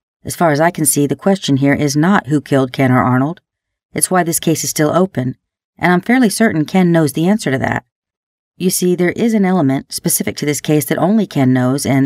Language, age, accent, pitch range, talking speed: English, 40-59, American, 130-165 Hz, 240 wpm